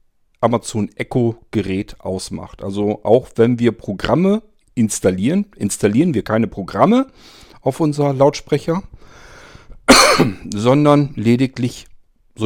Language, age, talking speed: German, 50-69, 95 wpm